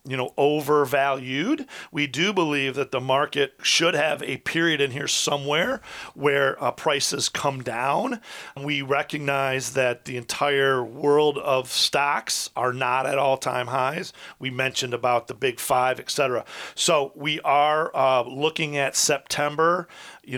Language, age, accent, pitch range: English, 40-59, American, 130-150 Hz